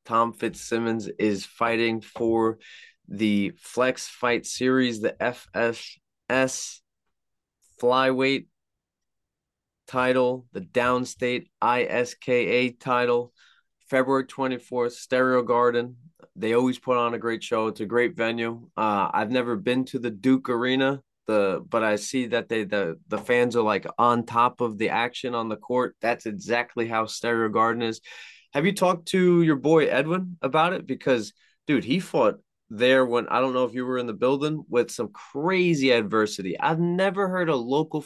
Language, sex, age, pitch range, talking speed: English, male, 20-39, 110-130 Hz, 155 wpm